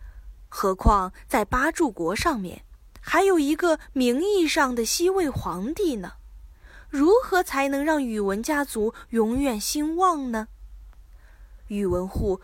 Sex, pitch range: female, 195-295 Hz